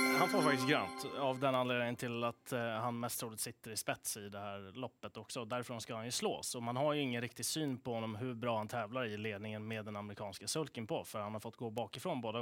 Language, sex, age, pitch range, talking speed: Swedish, male, 20-39, 115-145 Hz, 245 wpm